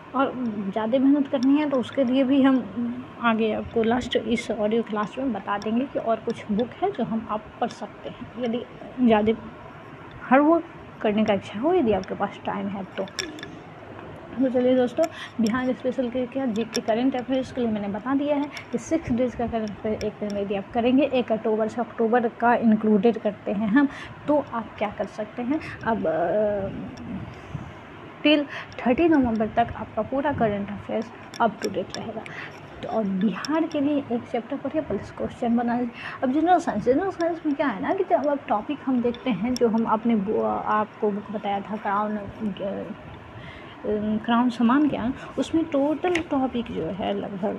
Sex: female